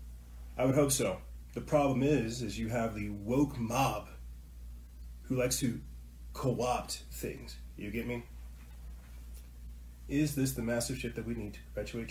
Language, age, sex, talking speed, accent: English, 30-49, male, 150 wpm, American